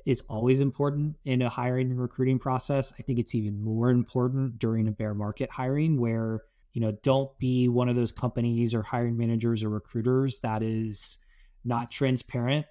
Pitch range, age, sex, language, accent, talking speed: 110-130 Hz, 20-39, male, English, American, 180 wpm